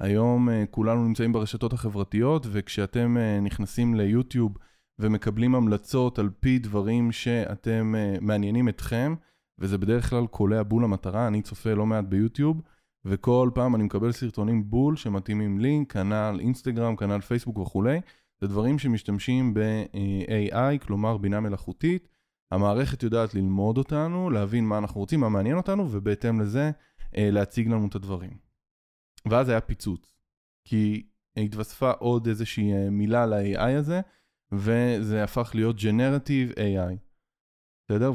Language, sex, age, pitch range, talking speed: Hebrew, male, 20-39, 105-125 Hz, 125 wpm